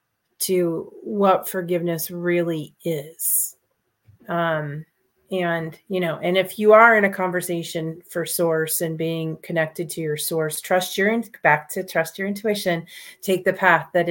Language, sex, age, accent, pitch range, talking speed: English, female, 30-49, American, 165-190 Hz, 150 wpm